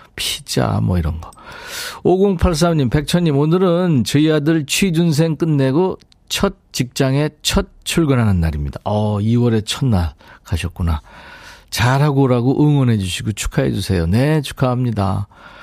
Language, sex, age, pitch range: Korean, male, 40-59, 105-160 Hz